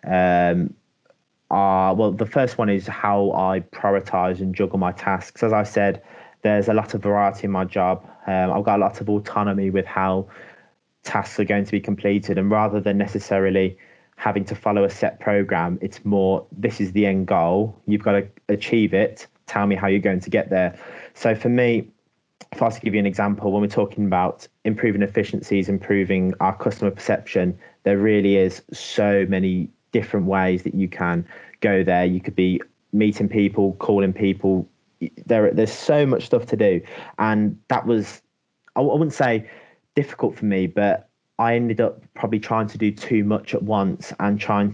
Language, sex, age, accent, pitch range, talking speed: English, male, 20-39, British, 95-105 Hz, 190 wpm